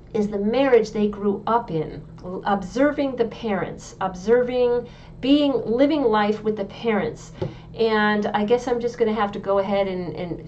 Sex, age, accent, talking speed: female, 40-59, American, 165 wpm